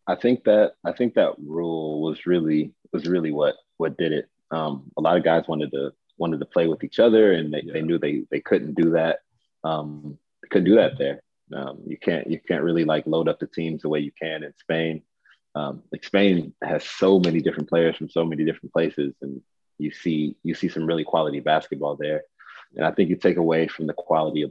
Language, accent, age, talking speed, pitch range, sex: English, American, 30-49, 225 wpm, 75-90 Hz, male